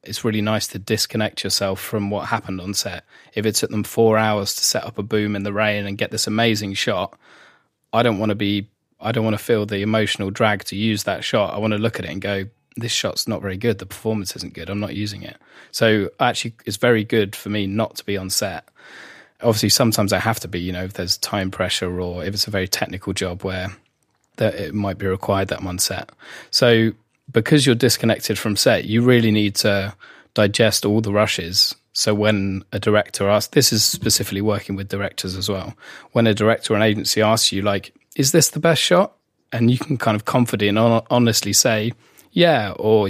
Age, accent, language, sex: 20-39, British, English, male